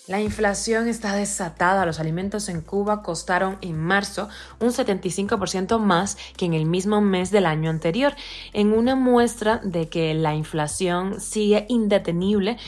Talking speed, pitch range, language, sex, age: 145 wpm, 160-205 Hz, Spanish, female, 20-39